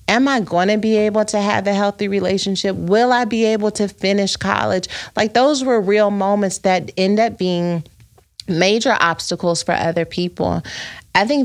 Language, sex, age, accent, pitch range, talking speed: English, female, 30-49, American, 165-200 Hz, 180 wpm